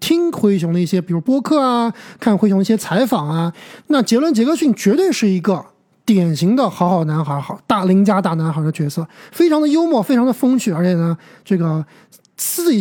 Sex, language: male, Chinese